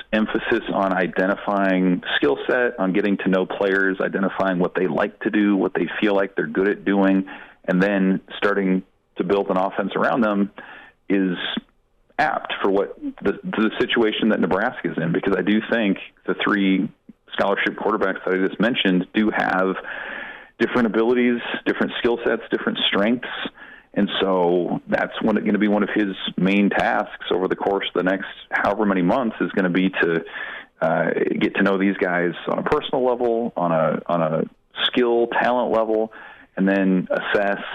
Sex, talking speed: male, 175 wpm